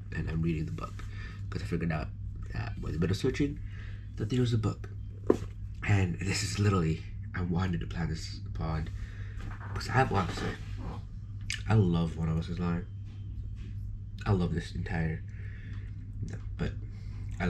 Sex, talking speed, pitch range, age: male, 175 wpm, 95-100 Hz, 20-39